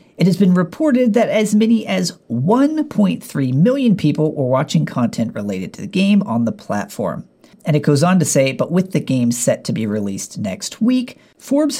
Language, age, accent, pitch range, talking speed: English, 40-59, American, 135-205 Hz, 195 wpm